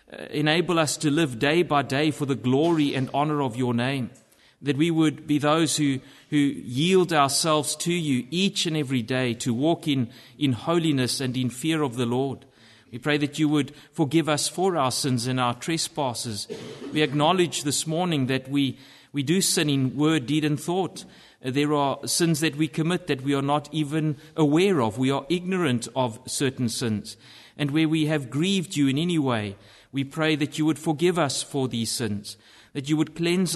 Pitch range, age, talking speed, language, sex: 130-160 Hz, 30-49, 195 wpm, English, male